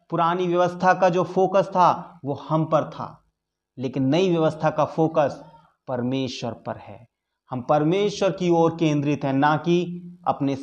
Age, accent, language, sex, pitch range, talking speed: 30-49, native, Hindi, male, 140-180 Hz, 155 wpm